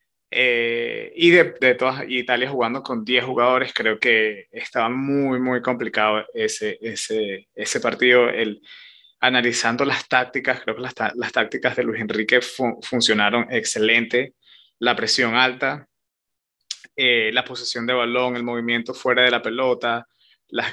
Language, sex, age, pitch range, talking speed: Spanish, male, 20-39, 120-135 Hz, 150 wpm